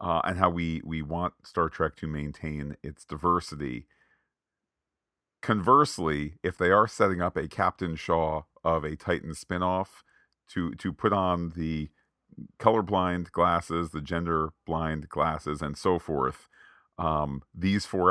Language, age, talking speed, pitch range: English, 40-59, 140 wpm, 75-95 Hz